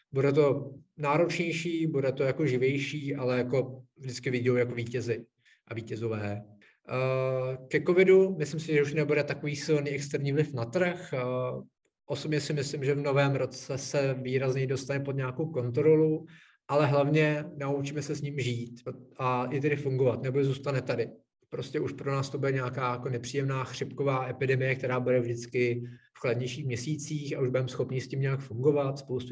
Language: Czech